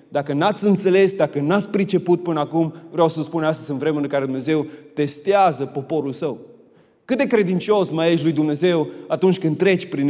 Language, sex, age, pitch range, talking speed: Romanian, male, 30-49, 160-210 Hz, 185 wpm